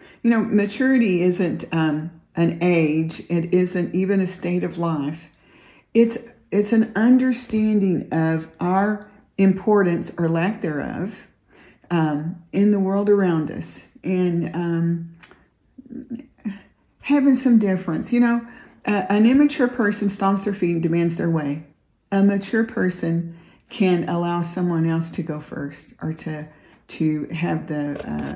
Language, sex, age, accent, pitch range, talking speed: English, female, 50-69, American, 165-220 Hz, 135 wpm